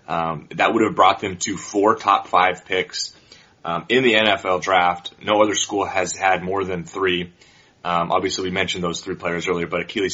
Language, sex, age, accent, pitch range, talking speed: English, male, 30-49, American, 90-105 Hz, 200 wpm